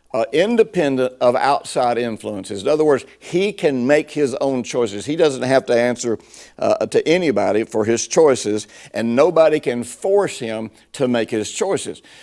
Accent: American